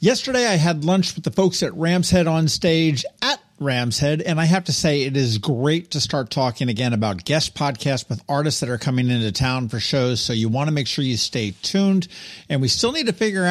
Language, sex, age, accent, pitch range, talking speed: English, male, 50-69, American, 125-170 Hz, 230 wpm